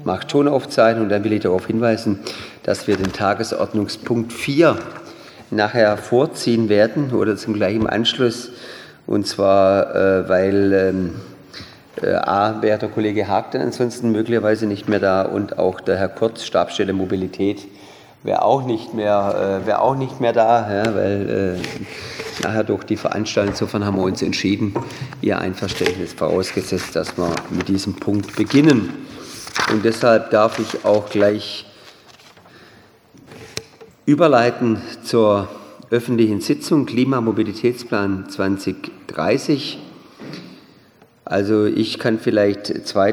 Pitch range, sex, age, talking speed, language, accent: 100-115 Hz, male, 40-59, 120 wpm, German, German